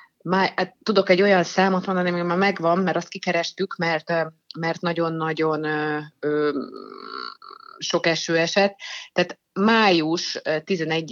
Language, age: Hungarian, 30-49